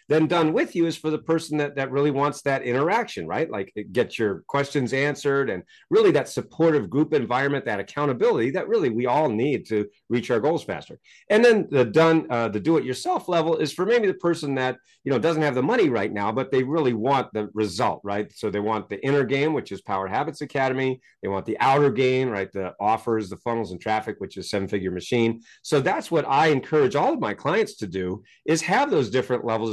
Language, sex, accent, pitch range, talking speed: English, male, American, 115-155 Hz, 230 wpm